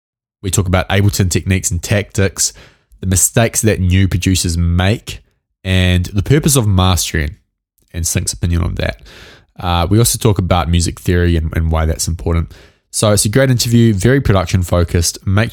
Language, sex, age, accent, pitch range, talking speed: English, male, 20-39, Australian, 85-105 Hz, 170 wpm